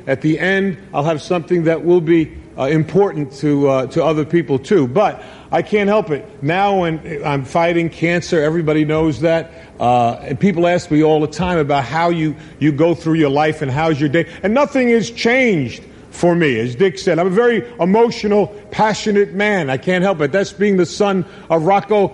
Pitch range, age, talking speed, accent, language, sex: 170-225 Hz, 50-69, 205 wpm, American, English, male